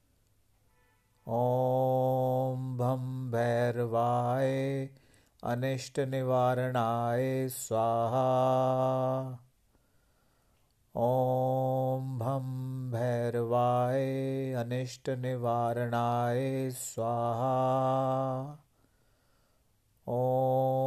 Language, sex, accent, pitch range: Hindi, male, native, 120-130 Hz